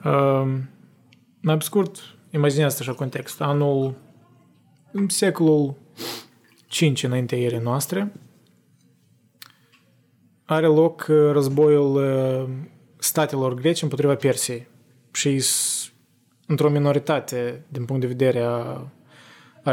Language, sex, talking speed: Romanian, male, 90 wpm